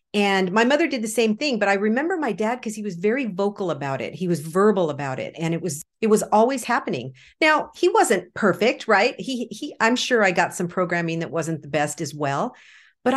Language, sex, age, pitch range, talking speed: English, female, 50-69, 175-240 Hz, 230 wpm